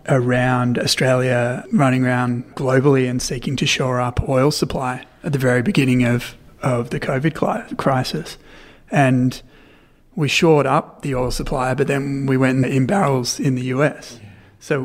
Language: English